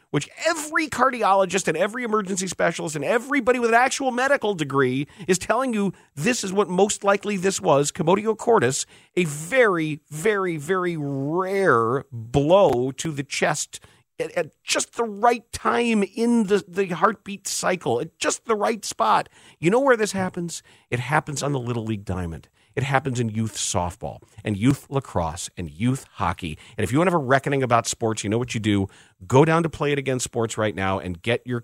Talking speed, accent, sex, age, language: 190 wpm, American, male, 40-59, English